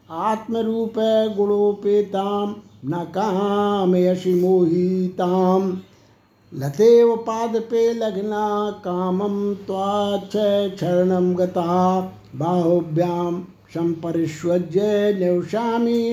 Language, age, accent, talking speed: Hindi, 60-79, native, 50 wpm